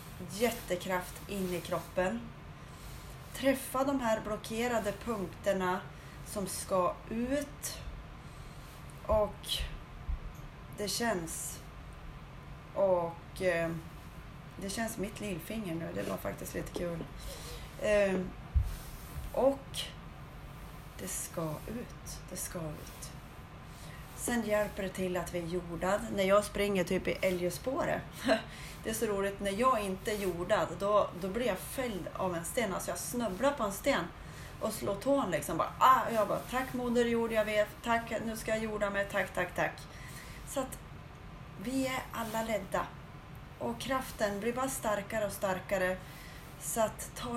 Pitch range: 180-230 Hz